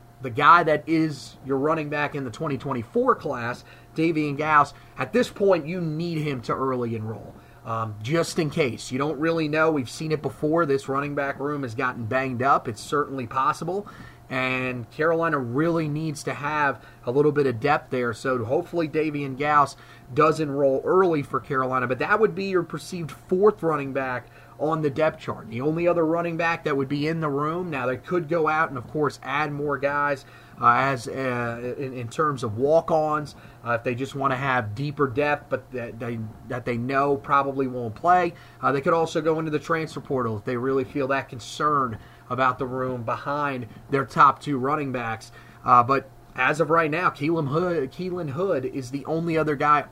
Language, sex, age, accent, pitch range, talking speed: English, male, 30-49, American, 125-155 Hz, 200 wpm